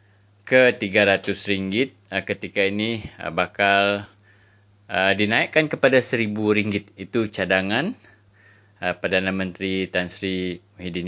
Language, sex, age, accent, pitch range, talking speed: English, male, 20-39, Indonesian, 95-105 Hz, 105 wpm